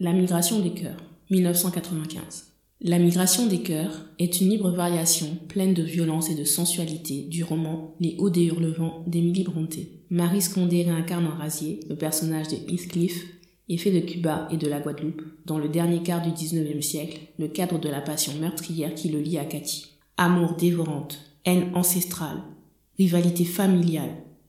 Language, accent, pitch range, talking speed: French, French, 160-190 Hz, 165 wpm